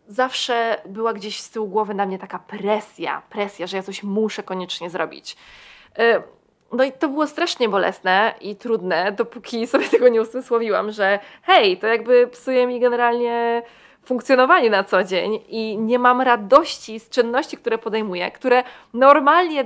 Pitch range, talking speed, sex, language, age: 210-270 Hz, 155 wpm, female, Polish, 20-39